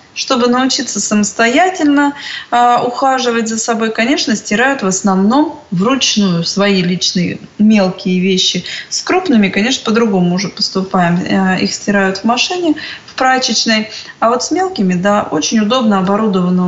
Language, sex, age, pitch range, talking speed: Russian, female, 20-39, 195-235 Hz, 135 wpm